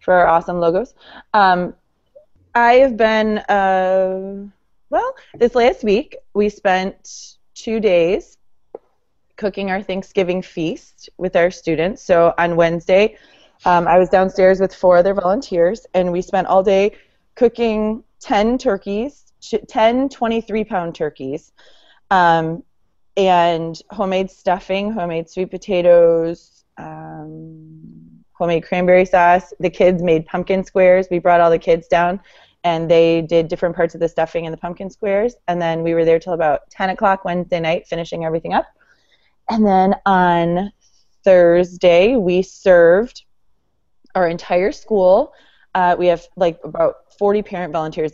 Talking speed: 135 wpm